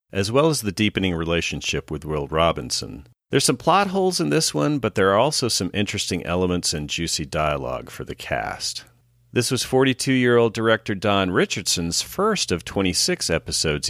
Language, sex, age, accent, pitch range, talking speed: English, male, 40-59, American, 75-110 Hz, 170 wpm